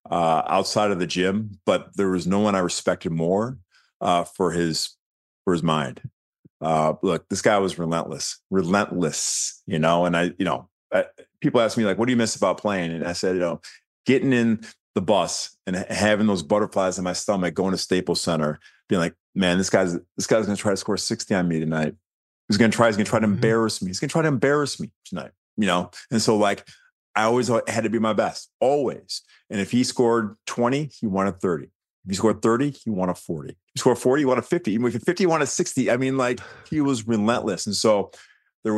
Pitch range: 90-120 Hz